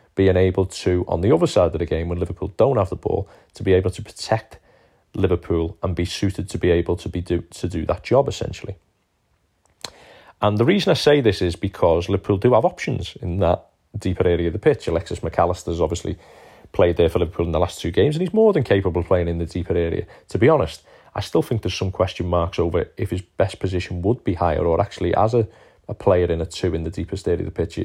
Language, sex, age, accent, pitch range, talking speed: English, male, 30-49, British, 85-100 Hz, 240 wpm